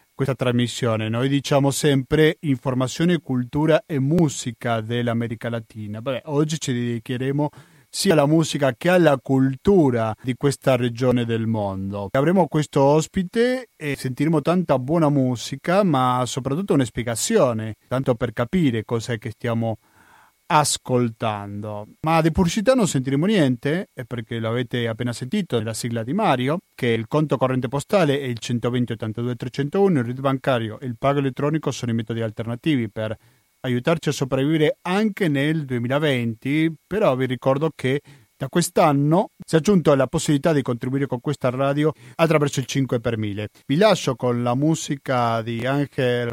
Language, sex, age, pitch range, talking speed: Italian, male, 30-49, 120-150 Hz, 145 wpm